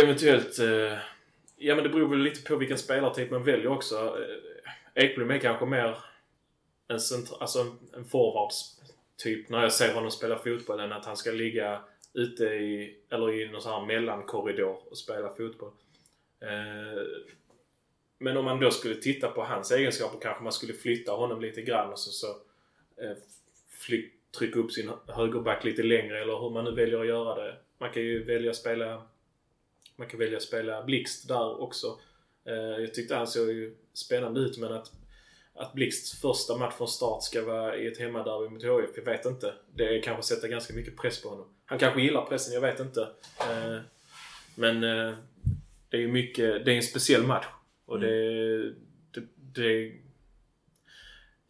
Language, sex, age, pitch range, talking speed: Swedish, male, 20-39, 110-135 Hz, 180 wpm